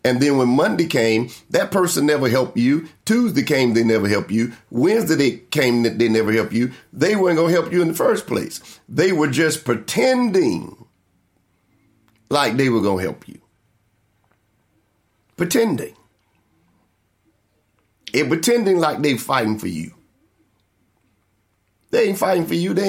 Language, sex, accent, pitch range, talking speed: English, male, American, 110-165 Hz, 150 wpm